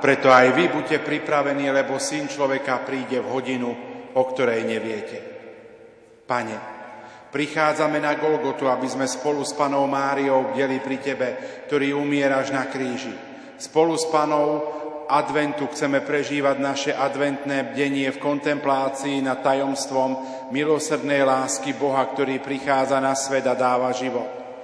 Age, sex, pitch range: 40-59, male, 135-150 Hz